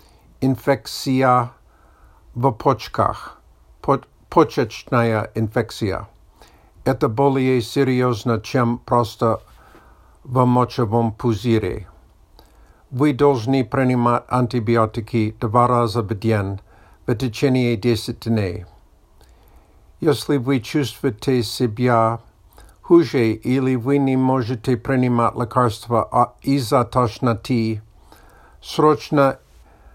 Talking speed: 80 wpm